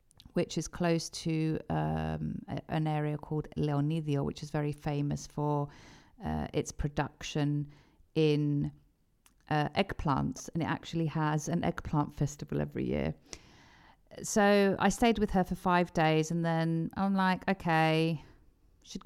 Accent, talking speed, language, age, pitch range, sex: British, 135 wpm, Greek, 40-59, 150-200 Hz, female